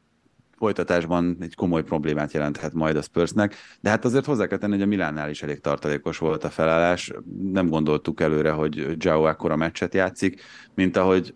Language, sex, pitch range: Hungarian, male, 80-95 Hz